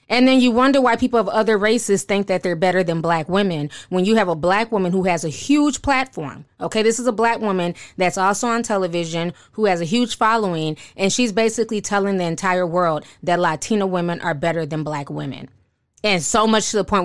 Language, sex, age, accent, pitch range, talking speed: English, female, 20-39, American, 170-220 Hz, 220 wpm